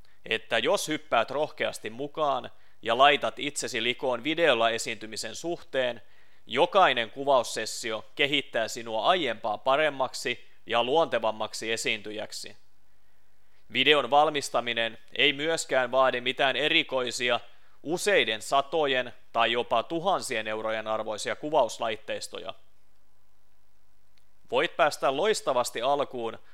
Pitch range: 105-135 Hz